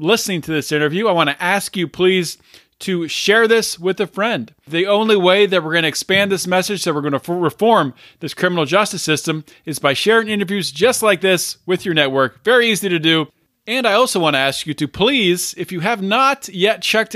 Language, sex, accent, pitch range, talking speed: English, male, American, 160-225 Hz, 225 wpm